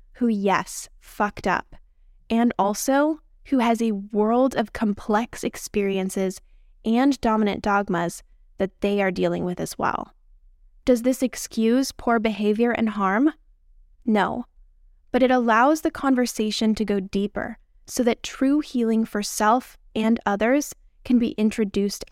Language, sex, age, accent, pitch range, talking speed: English, female, 10-29, American, 185-245 Hz, 135 wpm